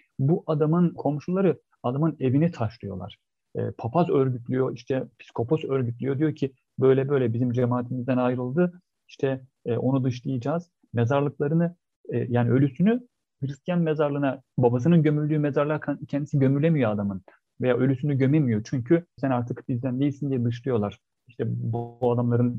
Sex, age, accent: male, 40-59, native